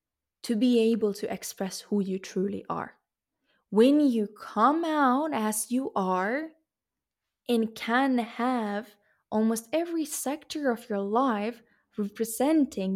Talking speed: 120 wpm